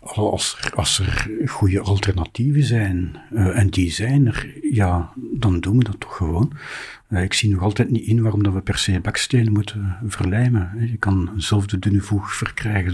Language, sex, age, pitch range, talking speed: Dutch, male, 60-79, 95-115 Hz, 185 wpm